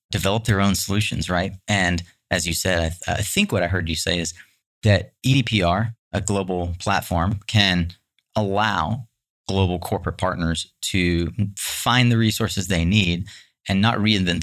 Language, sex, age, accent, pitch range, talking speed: English, male, 30-49, American, 85-105 Hz, 160 wpm